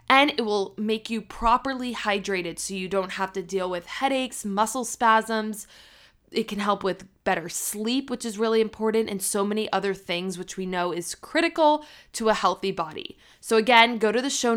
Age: 20-39